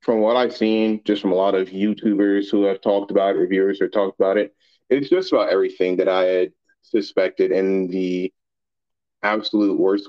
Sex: male